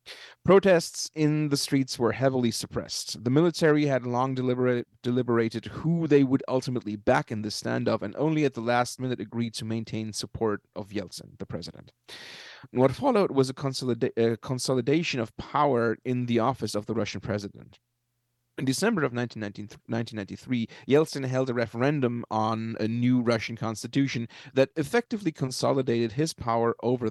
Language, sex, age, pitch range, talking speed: English, male, 30-49, 115-135 Hz, 150 wpm